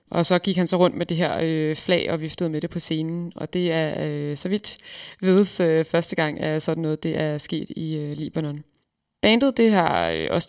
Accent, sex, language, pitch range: native, female, Danish, 160-185 Hz